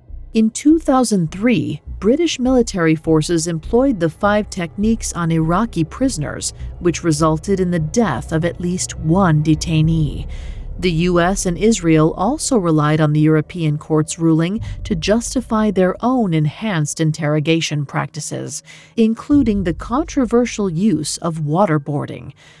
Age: 40-59